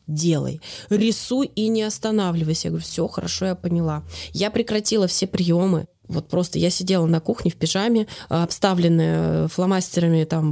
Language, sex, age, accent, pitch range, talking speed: Russian, female, 20-39, native, 170-210 Hz, 150 wpm